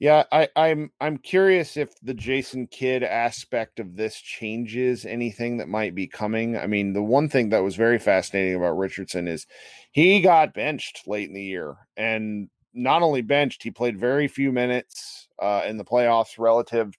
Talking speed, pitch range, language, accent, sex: 180 wpm, 115-145 Hz, English, American, male